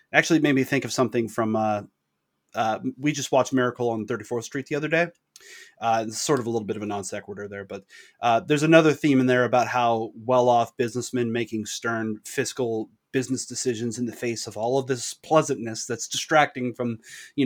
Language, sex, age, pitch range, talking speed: English, male, 30-49, 120-145 Hz, 210 wpm